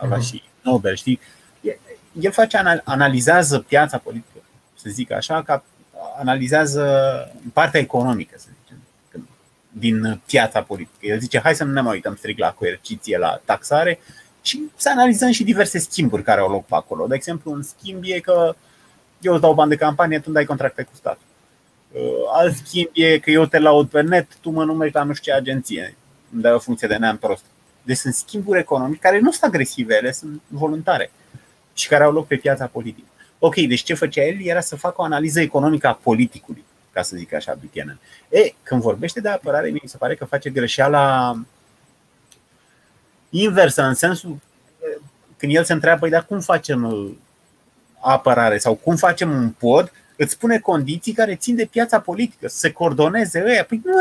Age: 30-49